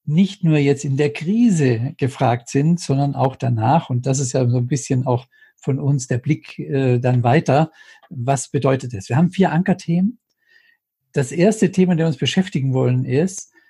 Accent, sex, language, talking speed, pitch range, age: German, male, German, 185 wpm, 125-170 Hz, 60-79